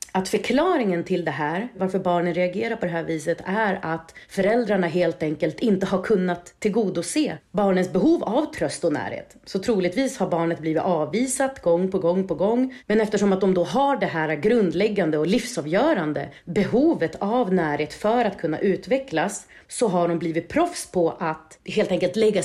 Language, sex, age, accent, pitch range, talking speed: English, female, 30-49, Swedish, 170-220 Hz, 175 wpm